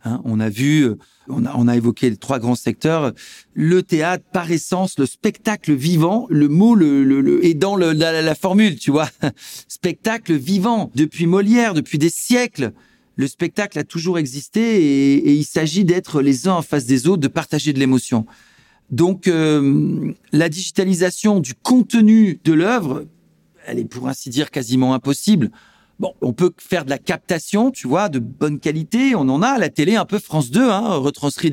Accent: French